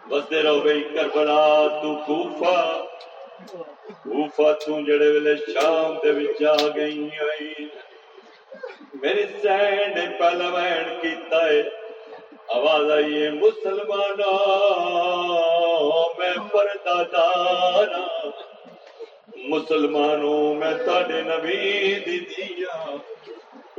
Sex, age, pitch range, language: male, 50-69, 150-200 Hz, Urdu